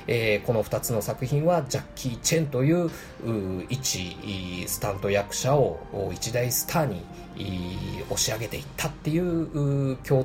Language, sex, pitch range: Japanese, male, 110-160 Hz